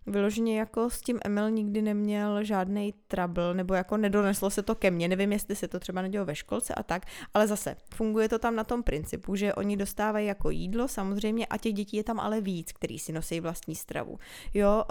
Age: 20-39